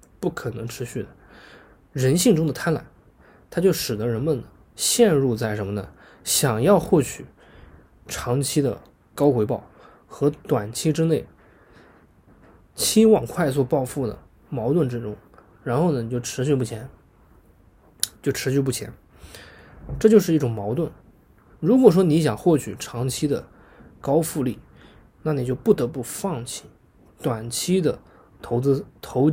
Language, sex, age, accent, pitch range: Chinese, male, 20-39, native, 110-150 Hz